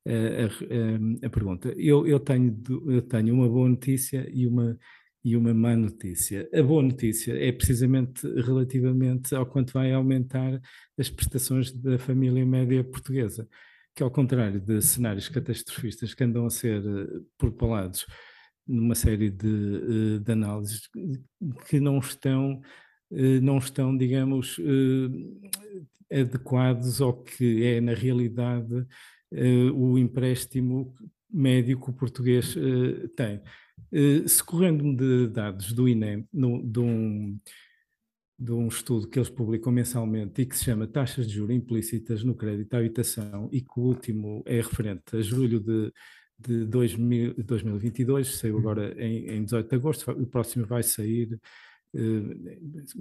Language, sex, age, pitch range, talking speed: Portuguese, male, 50-69, 115-130 Hz, 135 wpm